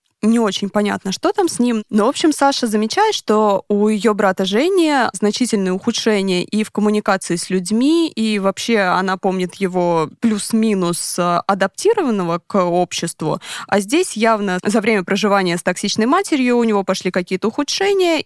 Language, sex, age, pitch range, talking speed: Russian, female, 20-39, 185-225 Hz, 155 wpm